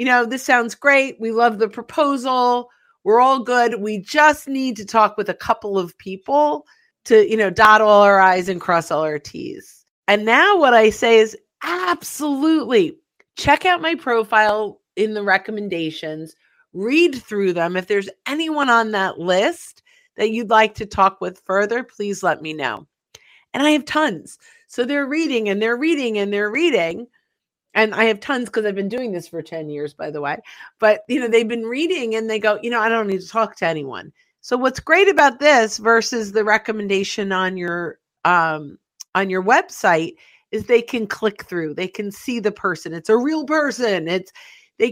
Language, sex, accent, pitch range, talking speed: English, female, American, 195-270 Hz, 190 wpm